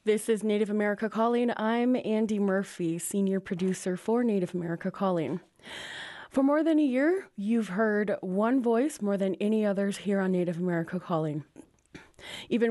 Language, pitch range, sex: English, 195-245 Hz, female